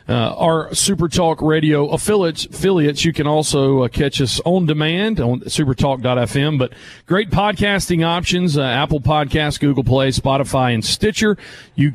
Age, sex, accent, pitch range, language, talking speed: 40-59, male, American, 135-180 Hz, English, 150 wpm